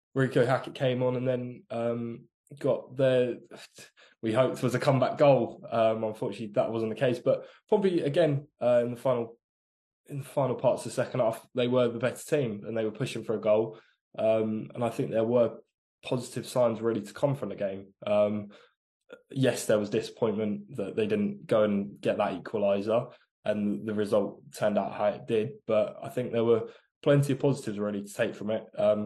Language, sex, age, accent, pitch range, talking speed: English, male, 10-29, British, 105-125 Hz, 200 wpm